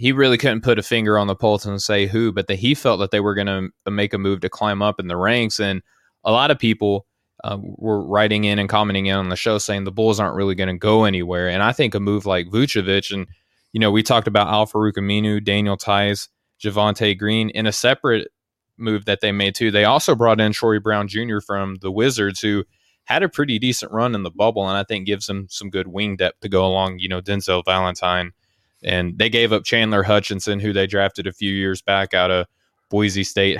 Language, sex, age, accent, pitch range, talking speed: English, male, 20-39, American, 95-105 Hz, 240 wpm